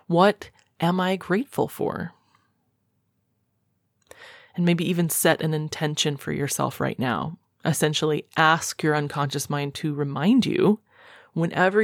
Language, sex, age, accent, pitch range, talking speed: English, female, 30-49, American, 150-190 Hz, 120 wpm